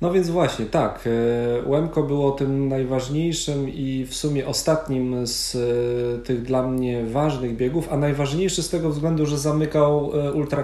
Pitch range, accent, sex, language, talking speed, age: 125-140 Hz, native, male, Polish, 145 wpm, 40-59